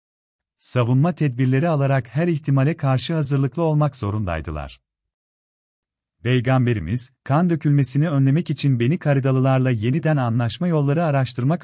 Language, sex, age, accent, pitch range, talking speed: Turkish, male, 40-59, native, 85-145 Hz, 105 wpm